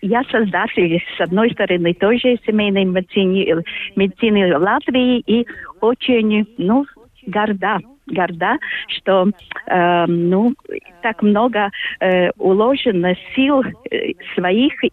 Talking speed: 95 wpm